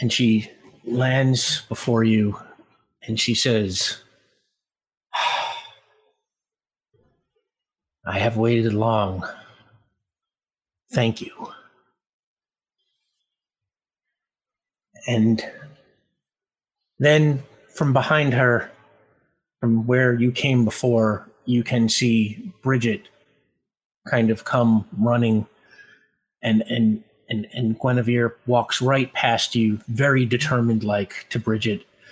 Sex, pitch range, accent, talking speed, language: male, 110-125 Hz, American, 85 wpm, English